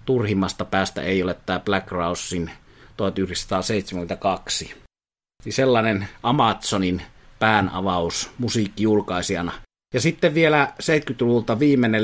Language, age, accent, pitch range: Finnish, 30-49, native, 95-115 Hz